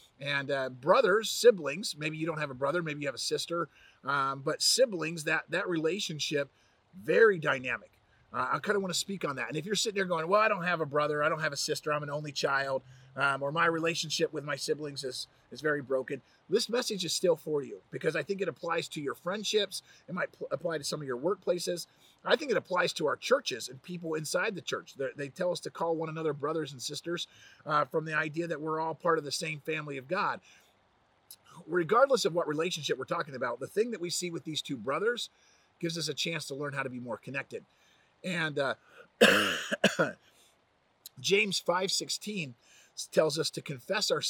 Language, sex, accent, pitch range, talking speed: English, male, American, 140-180 Hz, 215 wpm